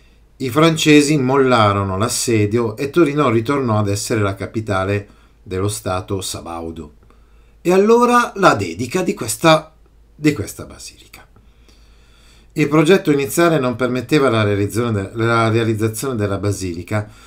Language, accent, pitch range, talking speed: Italian, native, 100-145 Hz, 110 wpm